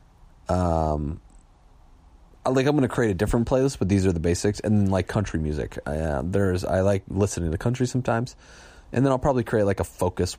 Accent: American